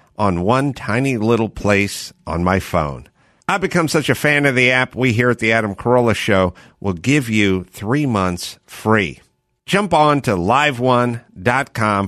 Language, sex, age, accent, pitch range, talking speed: English, male, 50-69, American, 95-140 Hz, 165 wpm